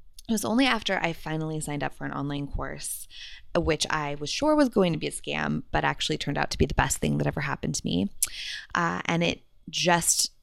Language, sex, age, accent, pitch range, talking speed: English, female, 20-39, American, 145-185 Hz, 230 wpm